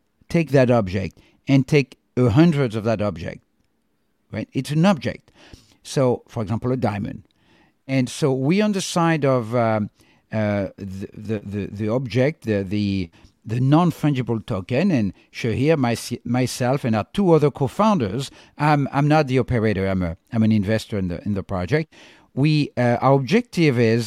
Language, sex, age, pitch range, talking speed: English, male, 50-69, 110-145 Hz, 165 wpm